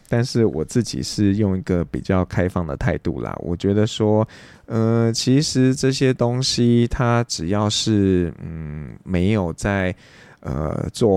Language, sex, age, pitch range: Chinese, male, 20-39, 85-110 Hz